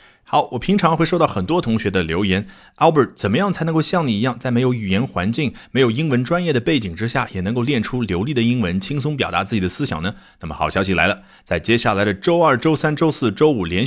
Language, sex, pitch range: Chinese, male, 95-155 Hz